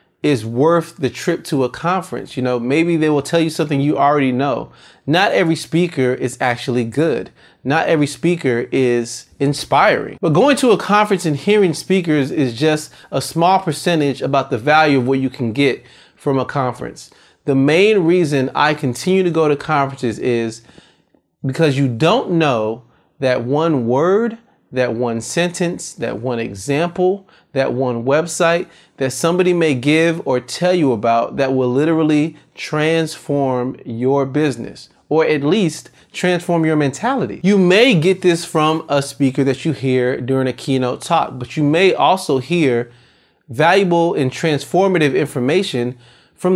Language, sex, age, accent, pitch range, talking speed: English, male, 30-49, American, 130-170 Hz, 160 wpm